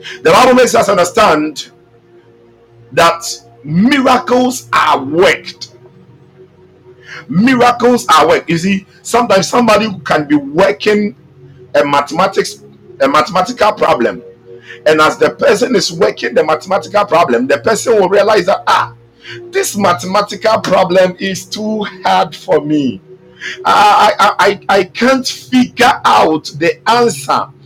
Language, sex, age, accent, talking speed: English, male, 50-69, Nigerian, 120 wpm